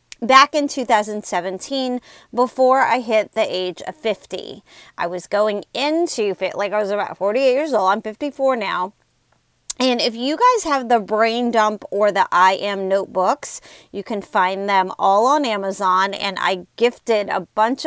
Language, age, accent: English, 30-49, American